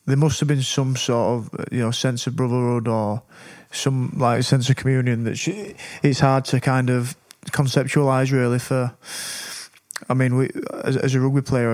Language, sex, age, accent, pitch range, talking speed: English, male, 20-39, British, 120-135 Hz, 185 wpm